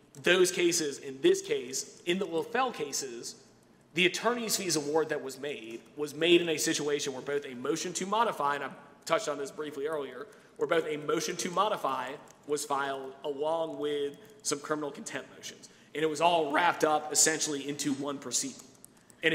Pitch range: 145-200 Hz